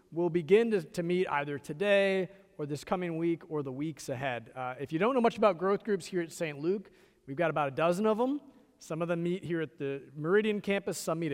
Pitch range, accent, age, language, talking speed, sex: 145-195 Hz, American, 40-59, English, 245 wpm, male